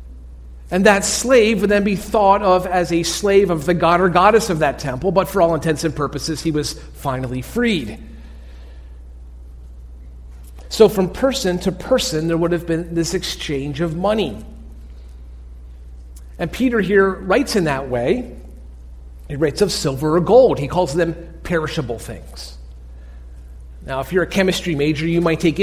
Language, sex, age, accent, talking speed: English, male, 40-59, American, 160 wpm